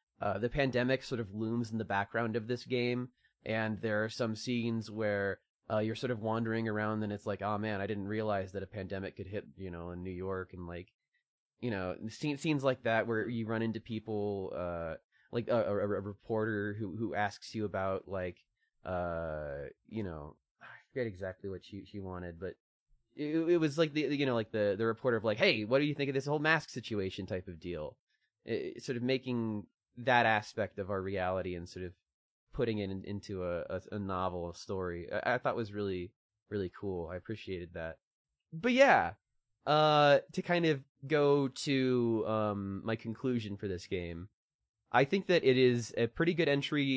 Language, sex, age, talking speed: English, male, 20-39, 205 wpm